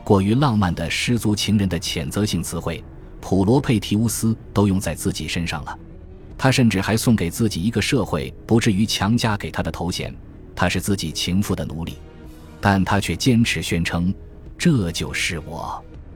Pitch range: 80-110 Hz